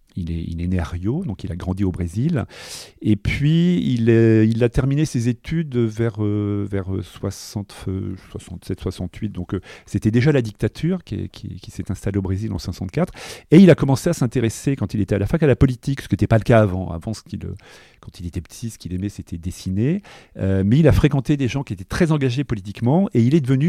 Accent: French